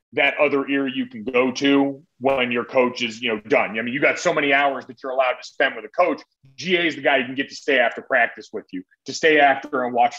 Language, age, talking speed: English, 30-49, 275 wpm